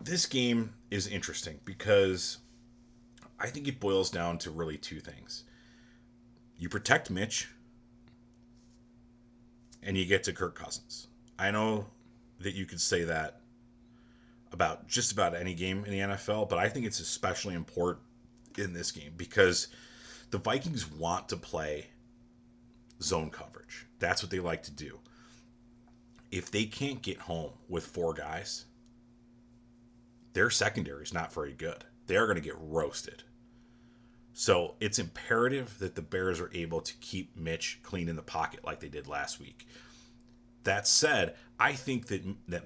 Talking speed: 150 wpm